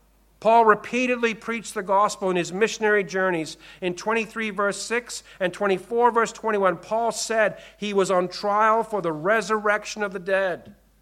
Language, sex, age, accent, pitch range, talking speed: English, male, 50-69, American, 155-210 Hz, 160 wpm